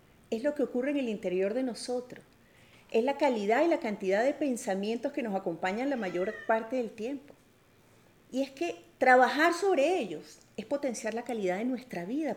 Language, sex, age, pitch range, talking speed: English, female, 40-59, 200-265 Hz, 185 wpm